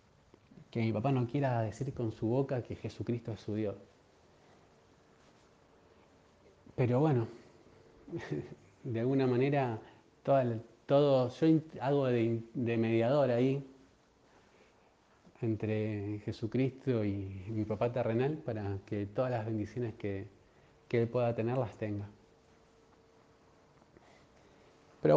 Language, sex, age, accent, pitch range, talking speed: Spanish, male, 20-39, Argentinian, 105-125 Hz, 110 wpm